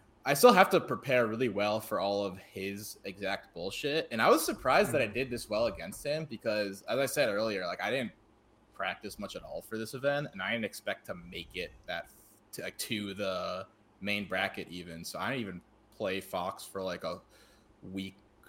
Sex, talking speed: male, 210 wpm